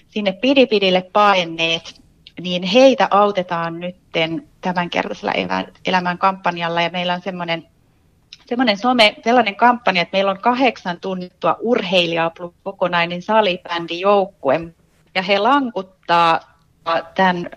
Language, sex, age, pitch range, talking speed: Finnish, female, 30-49, 170-205 Hz, 105 wpm